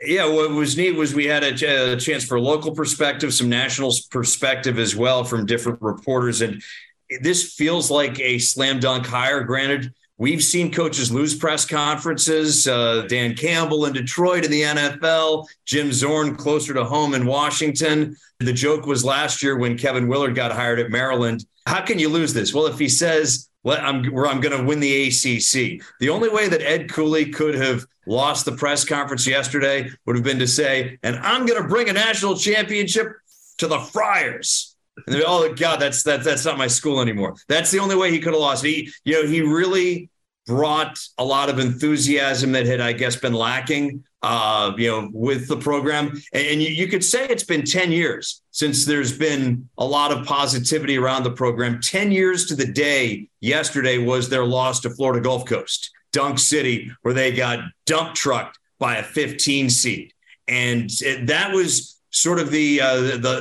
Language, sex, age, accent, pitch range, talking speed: English, male, 40-59, American, 125-155 Hz, 195 wpm